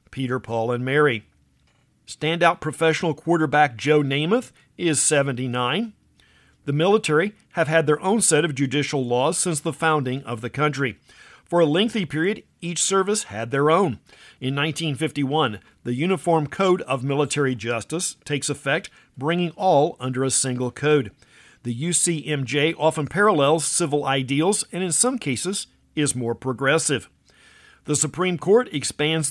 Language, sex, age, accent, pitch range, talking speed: English, male, 50-69, American, 135-170 Hz, 140 wpm